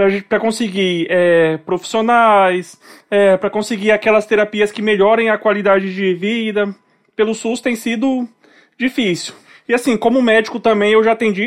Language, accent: Portuguese, Brazilian